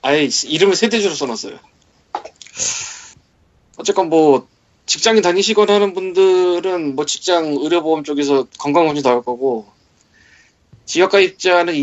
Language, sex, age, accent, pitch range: Korean, male, 20-39, native, 140-195 Hz